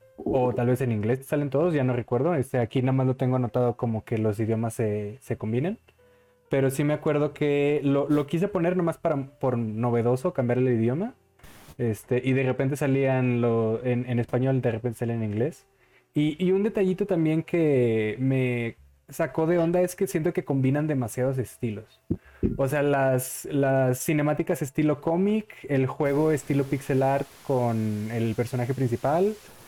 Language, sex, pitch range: Spanish, male, 120-145 Hz